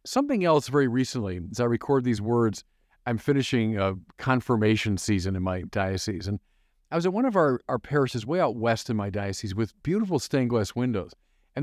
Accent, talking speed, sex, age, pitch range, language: American, 195 wpm, male, 50-69, 100-145 Hz, English